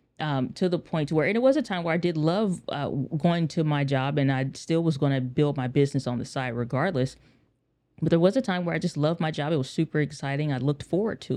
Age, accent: 20-39, American